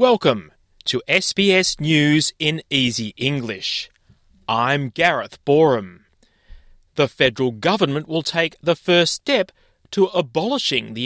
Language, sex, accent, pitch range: English, male, Australian, 135-190 Hz